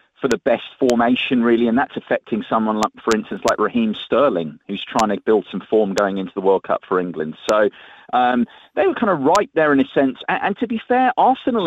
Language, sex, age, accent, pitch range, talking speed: English, male, 40-59, British, 105-135 Hz, 230 wpm